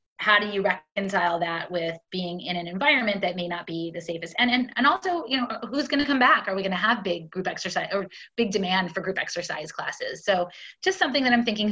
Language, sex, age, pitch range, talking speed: English, female, 20-39, 170-205 Hz, 245 wpm